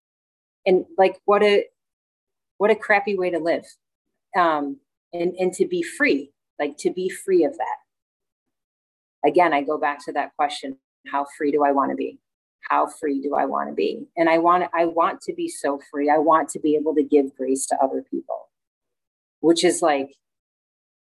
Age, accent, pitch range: 30-49, American, 150-225 Hz